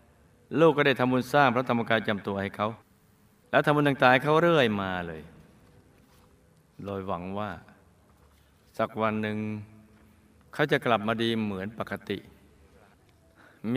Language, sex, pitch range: Thai, male, 100-125 Hz